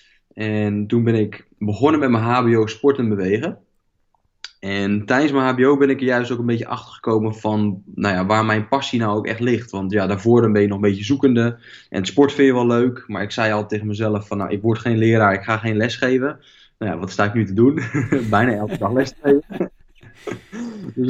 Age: 20-39